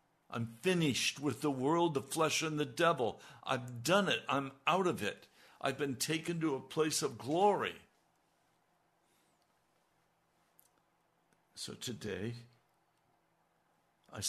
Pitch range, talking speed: 105-135 Hz, 120 wpm